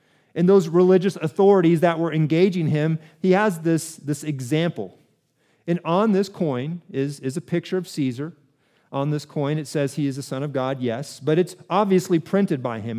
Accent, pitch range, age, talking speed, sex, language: American, 150-195 Hz, 40-59, 190 wpm, male, English